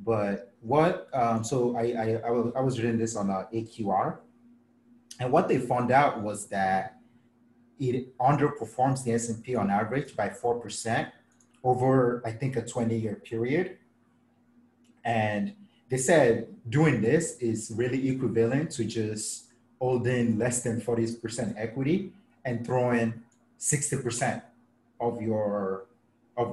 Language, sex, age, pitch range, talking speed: English, male, 30-49, 110-125 Hz, 125 wpm